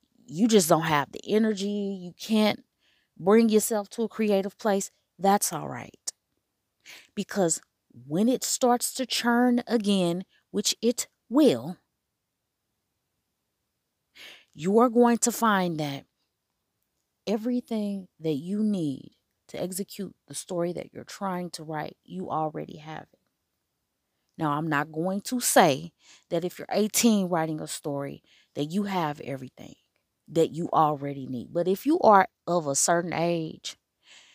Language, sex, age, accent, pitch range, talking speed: English, female, 20-39, American, 155-215 Hz, 140 wpm